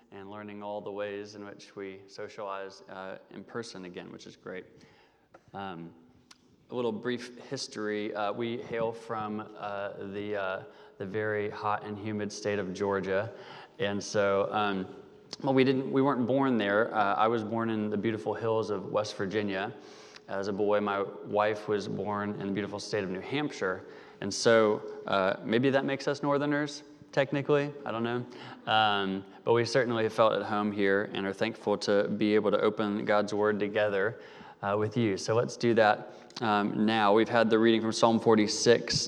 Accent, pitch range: American, 100-115 Hz